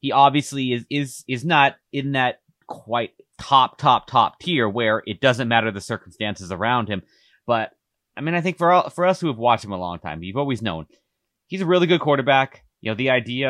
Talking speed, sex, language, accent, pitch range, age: 220 wpm, male, English, American, 105-140 Hz, 30-49